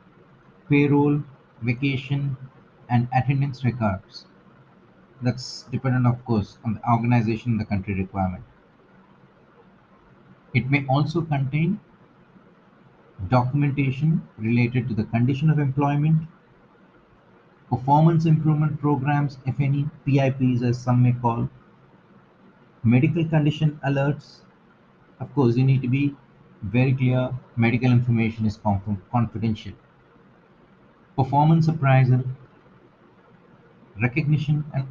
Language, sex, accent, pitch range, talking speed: English, male, Indian, 115-145 Hz, 95 wpm